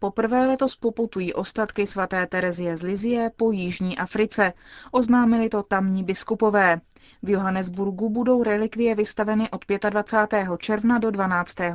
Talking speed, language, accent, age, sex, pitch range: 130 wpm, Czech, native, 30-49, female, 185-220 Hz